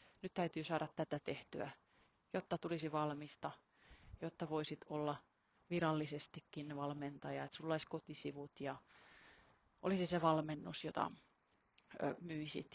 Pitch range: 155-185 Hz